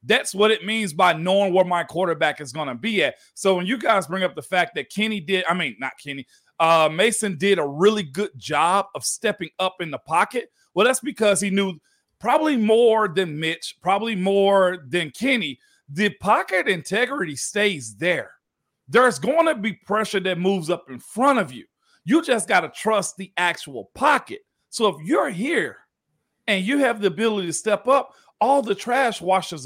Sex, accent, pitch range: male, American, 170-220 Hz